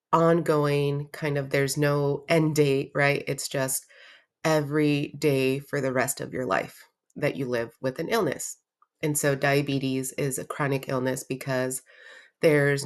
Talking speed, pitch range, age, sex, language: 155 wpm, 140-165 Hz, 30-49, female, English